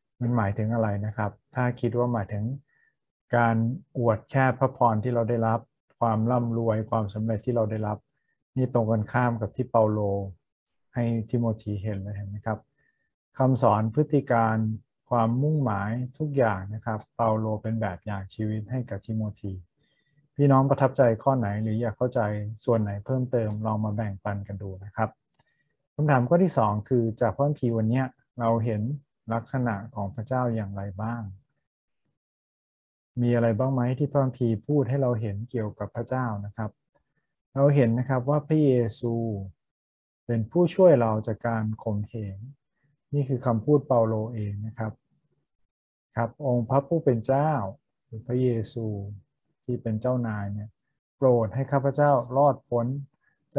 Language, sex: Thai, male